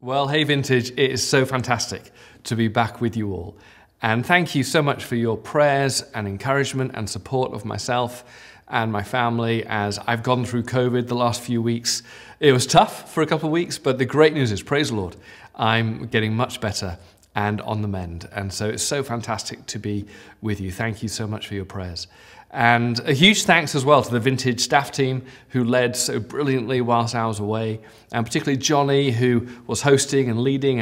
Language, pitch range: English, 110-135 Hz